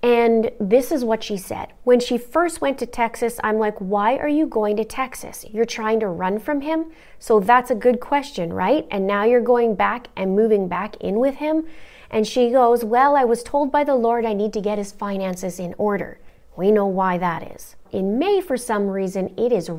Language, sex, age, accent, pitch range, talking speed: English, female, 30-49, American, 190-245 Hz, 220 wpm